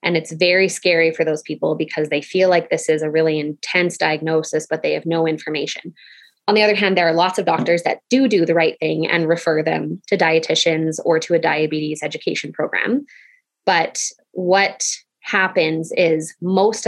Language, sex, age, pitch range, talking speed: English, female, 20-39, 160-185 Hz, 190 wpm